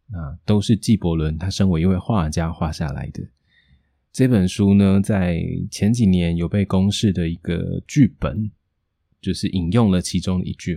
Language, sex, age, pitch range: Chinese, male, 20-39, 85-105 Hz